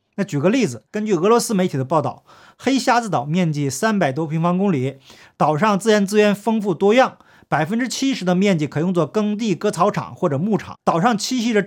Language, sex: Chinese, male